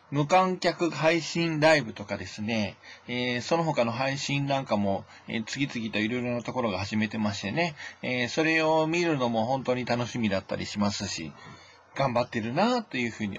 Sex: male